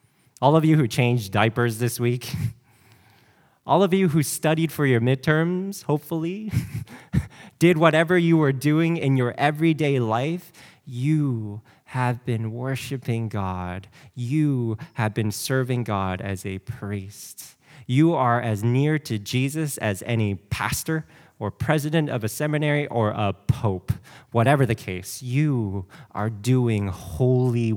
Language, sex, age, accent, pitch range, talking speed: English, male, 20-39, American, 115-155 Hz, 135 wpm